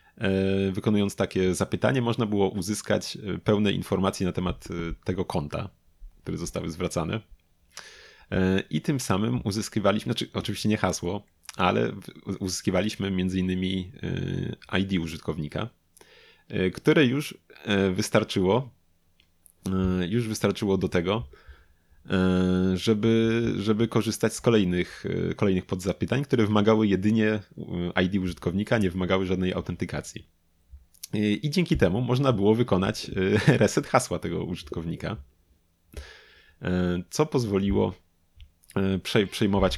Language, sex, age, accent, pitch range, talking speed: Polish, male, 30-49, native, 90-110 Hz, 95 wpm